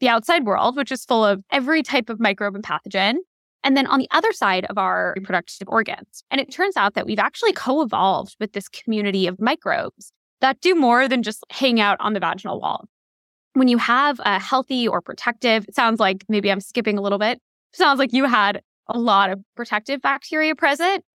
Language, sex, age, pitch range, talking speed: English, female, 20-39, 200-270 Hz, 205 wpm